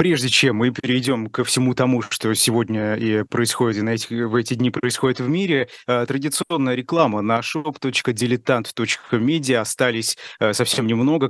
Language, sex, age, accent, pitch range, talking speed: Russian, male, 20-39, native, 110-130 Hz, 135 wpm